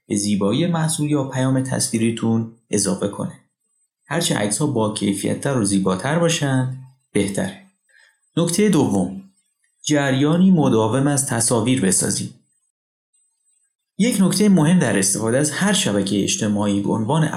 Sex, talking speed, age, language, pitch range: male, 120 wpm, 30-49, Persian, 105-155 Hz